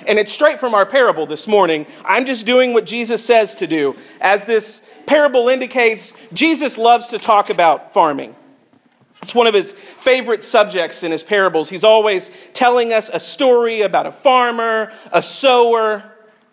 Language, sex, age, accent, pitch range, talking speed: English, male, 40-59, American, 200-255 Hz, 165 wpm